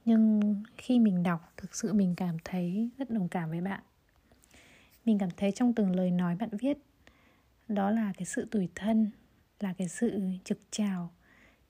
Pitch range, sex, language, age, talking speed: 185-225 Hz, female, Vietnamese, 20-39, 175 wpm